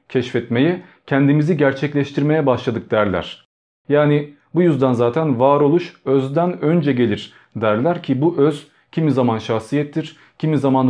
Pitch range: 120-160 Hz